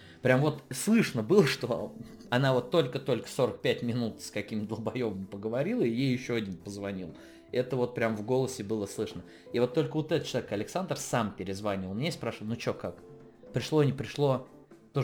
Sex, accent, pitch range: male, native, 115-145 Hz